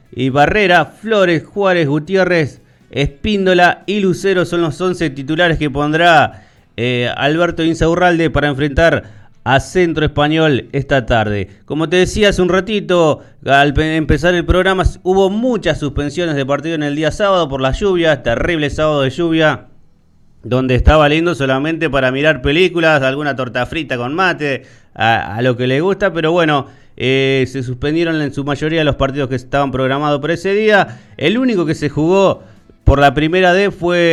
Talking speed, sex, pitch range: 170 wpm, male, 140-175 Hz